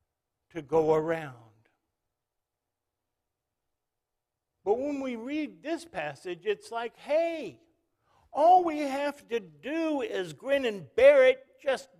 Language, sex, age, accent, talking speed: English, male, 60-79, American, 115 wpm